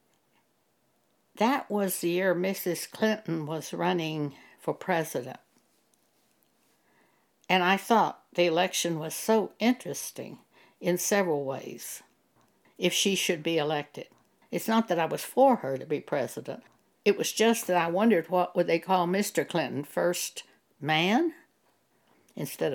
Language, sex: English, female